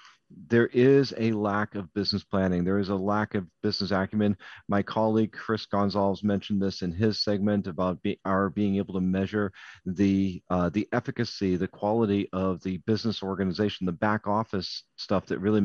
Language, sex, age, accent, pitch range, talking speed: English, male, 40-59, American, 100-115 Hz, 175 wpm